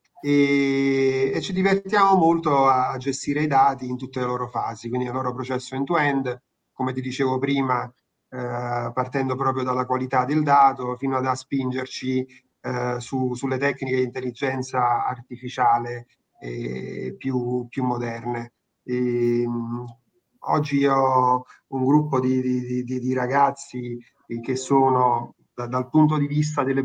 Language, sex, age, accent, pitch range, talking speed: Italian, male, 30-49, native, 125-140 Hz, 145 wpm